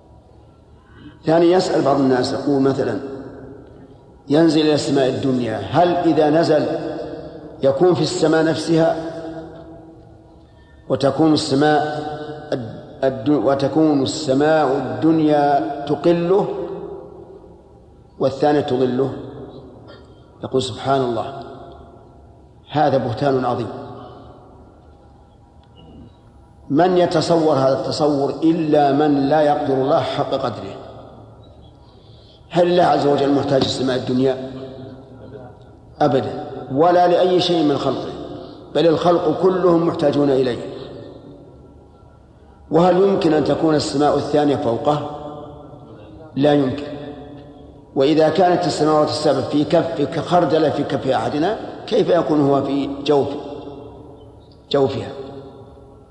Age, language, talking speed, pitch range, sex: 50-69, Arabic, 95 wpm, 135-155 Hz, male